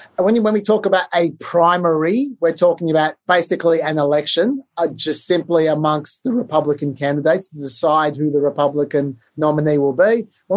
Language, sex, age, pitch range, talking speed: English, male, 30-49, 150-195 Hz, 160 wpm